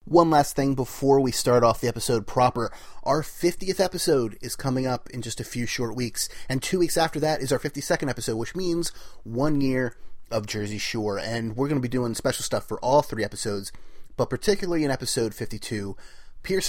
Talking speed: 200 wpm